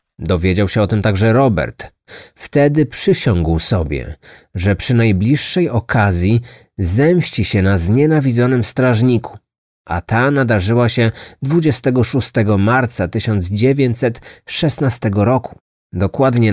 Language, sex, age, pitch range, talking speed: Polish, male, 30-49, 95-130 Hz, 100 wpm